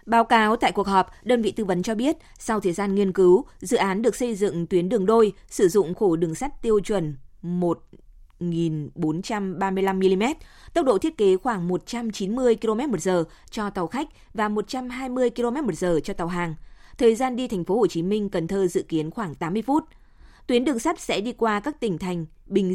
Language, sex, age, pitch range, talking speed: Vietnamese, female, 20-39, 180-225 Hz, 195 wpm